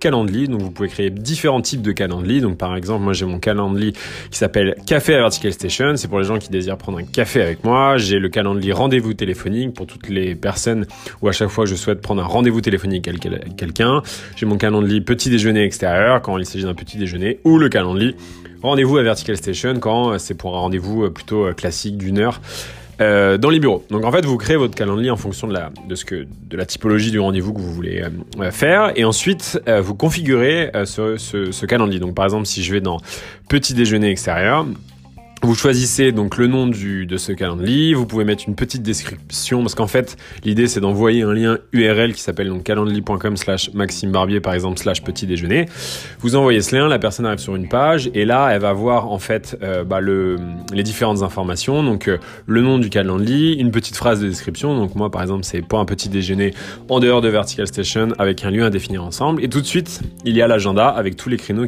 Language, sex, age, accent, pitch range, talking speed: French, male, 20-39, French, 95-120 Hz, 225 wpm